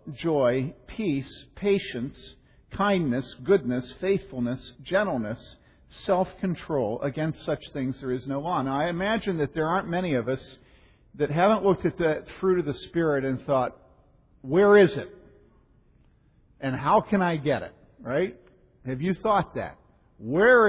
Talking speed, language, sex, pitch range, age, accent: 145 wpm, English, male, 140-195 Hz, 50-69, American